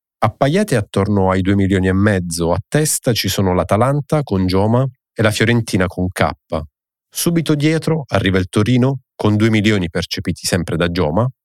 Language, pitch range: Italian, 95-125 Hz